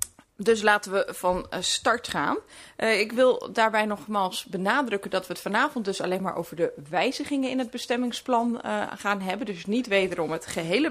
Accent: Dutch